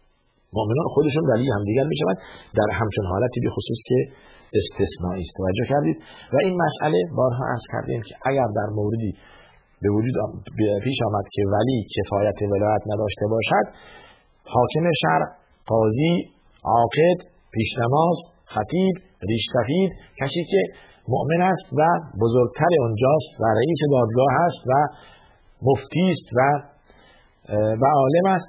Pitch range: 100-130 Hz